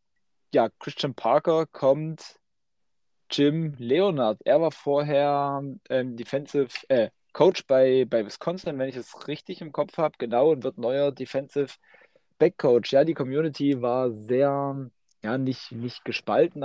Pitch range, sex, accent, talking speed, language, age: 125-145 Hz, male, German, 135 wpm, German, 20-39